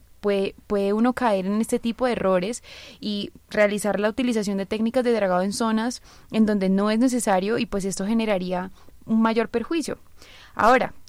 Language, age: Spanish, 20-39